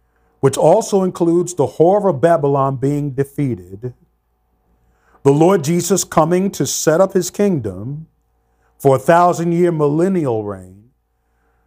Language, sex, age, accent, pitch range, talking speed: English, male, 50-69, American, 120-170 Hz, 125 wpm